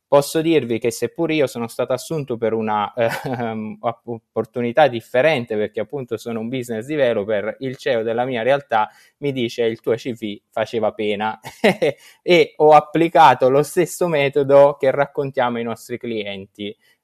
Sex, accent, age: male, native, 20-39